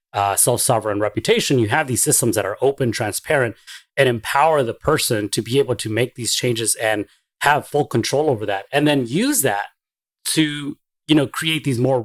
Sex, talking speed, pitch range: male, 190 wpm, 110-145 Hz